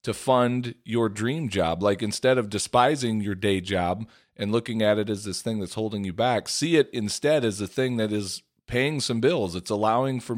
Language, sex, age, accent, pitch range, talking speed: English, male, 40-59, American, 105-140 Hz, 215 wpm